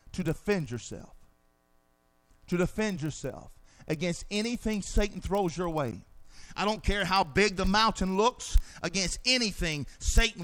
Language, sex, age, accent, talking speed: English, male, 50-69, American, 130 wpm